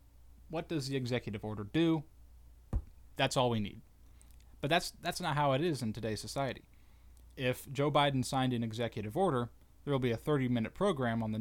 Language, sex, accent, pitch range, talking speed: English, male, American, 105-140 Hz, 185 wpm